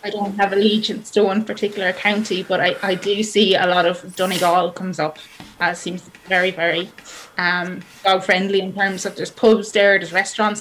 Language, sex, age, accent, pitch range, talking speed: English, female, 20-39, Irish, 180-210 Hz, 185 wpm